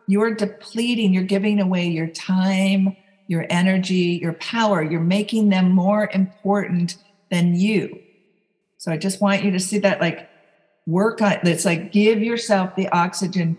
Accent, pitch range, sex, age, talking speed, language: American, 175-200 Hz, female, 50-69, 155 wpm, English